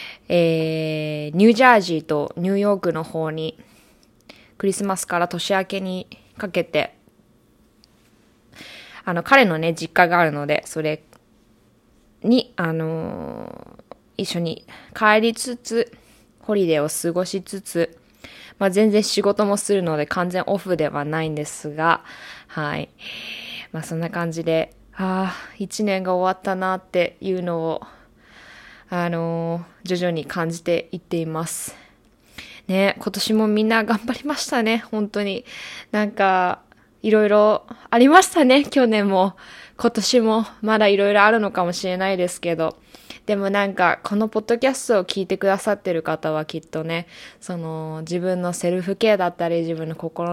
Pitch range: 165-215 Hz